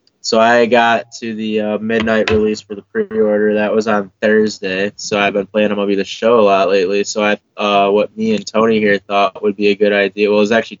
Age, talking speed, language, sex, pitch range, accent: 20-39, 245 wpm, English, male, 100-115 Hz, American